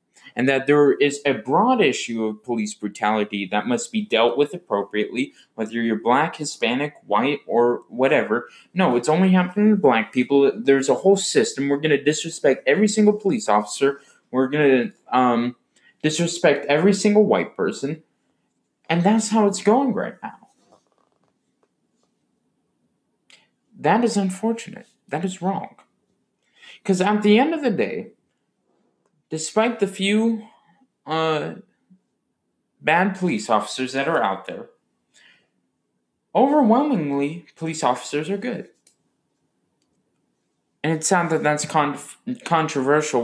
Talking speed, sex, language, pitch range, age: 130 wpm, male, English, 130-205 Hz, 20-39